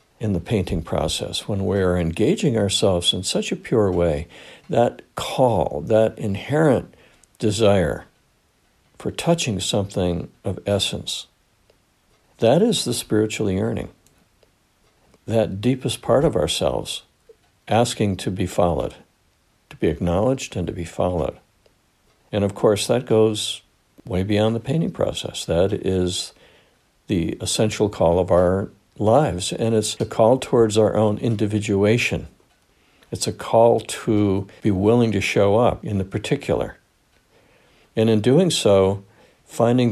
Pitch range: 95-115 Hz